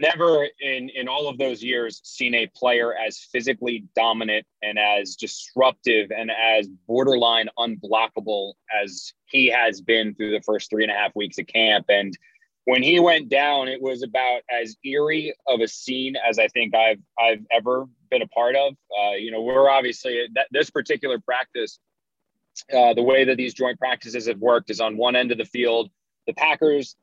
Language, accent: English, American